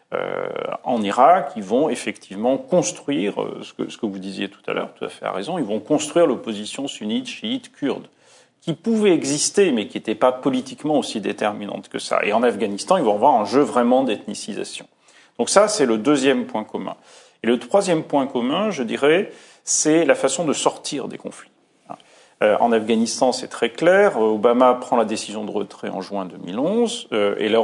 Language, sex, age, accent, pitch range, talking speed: French, male, 40-59, French, 110-175 Hz, 185 wpm